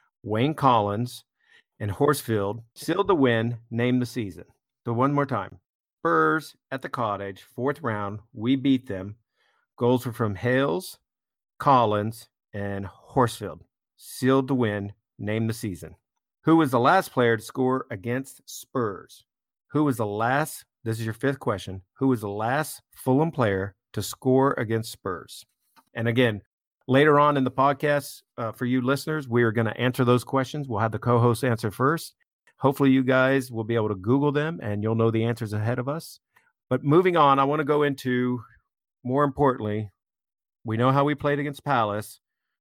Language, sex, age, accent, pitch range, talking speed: English, male, 50-69, American, 110-135 Hz, 170 wpm